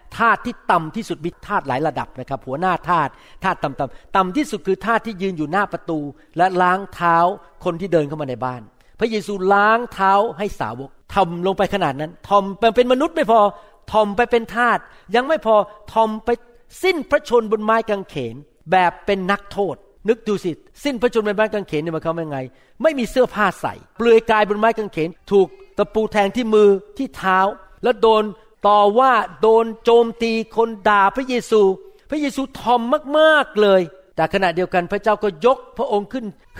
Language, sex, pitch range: Thai, male, 185-235 Hz